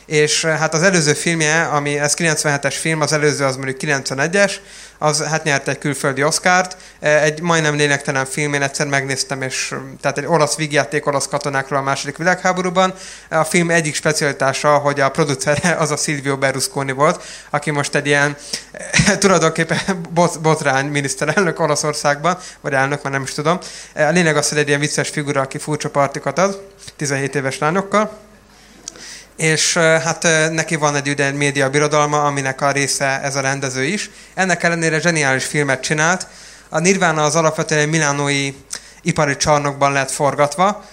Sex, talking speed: male, 155 wpm